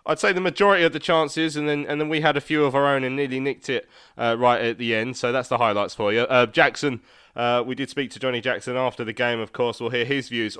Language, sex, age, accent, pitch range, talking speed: English, male, 20-39, British, 115-155 Hz, 290 wpm